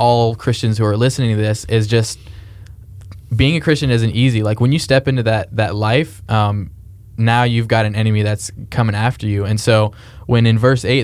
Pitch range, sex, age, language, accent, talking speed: 105-120 Hz, male, 10-29, English, American, 205 wpm